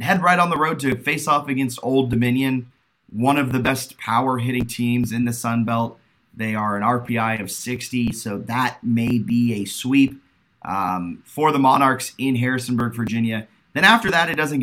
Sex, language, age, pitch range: male, English, 30-49, 110-130 Hz